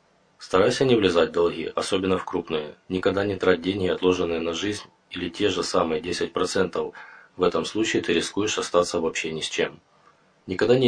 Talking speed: 175 wpm